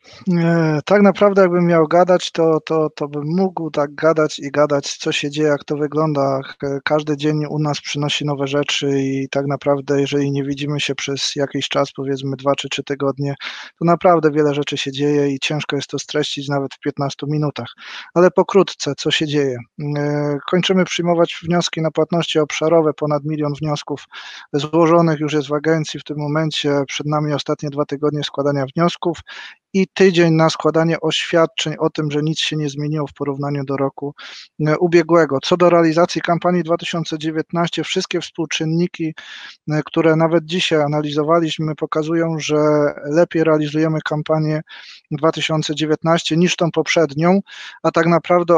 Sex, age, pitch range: male, 20-39, 145-165 Hz